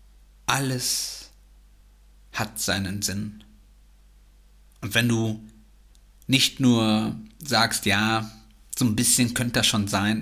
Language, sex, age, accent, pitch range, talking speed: German, male, 50-69, German, 100-125 Hz, 105 wpm